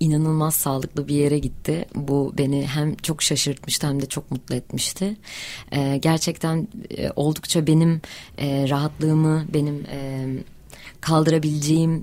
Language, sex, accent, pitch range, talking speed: Turkish, female, native, 140-160 Hz, 105 wpm